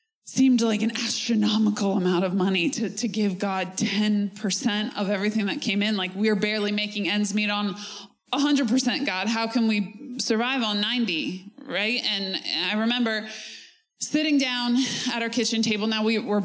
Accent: American